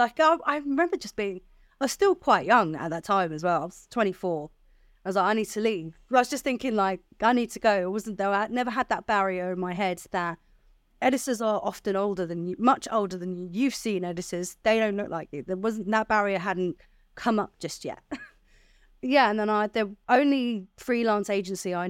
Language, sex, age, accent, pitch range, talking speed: English, female, 30-49, British, 185-245 Hz, 225 wpm